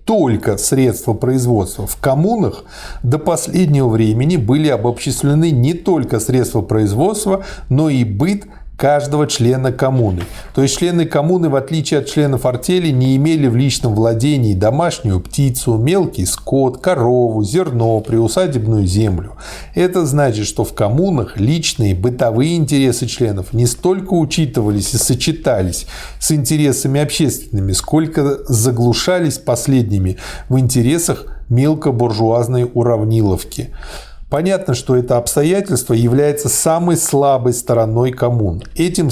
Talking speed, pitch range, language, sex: 115 wpm, 115-150 Hz, Russian, male